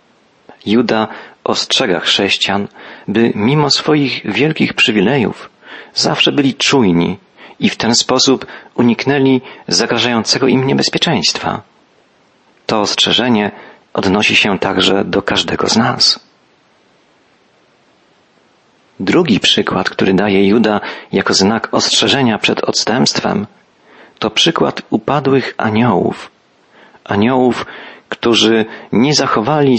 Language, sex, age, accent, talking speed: Polish, male, 40-59, native, 95 wpm